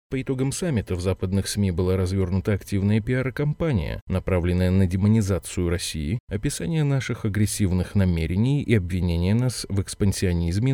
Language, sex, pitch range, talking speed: Russian, male, 90-120 Hz, 130 wpm